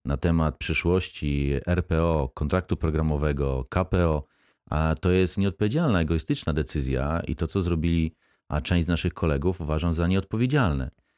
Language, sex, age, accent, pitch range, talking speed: Polish, male, 30-49, native, 80-95 Hz, 135 wpm